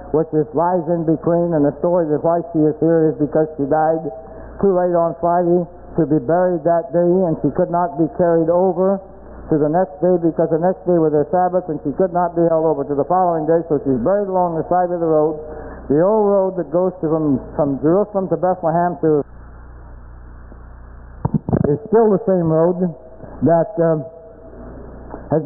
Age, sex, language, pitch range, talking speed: 60-79, male, English, 150-180 Hz, 200 wpm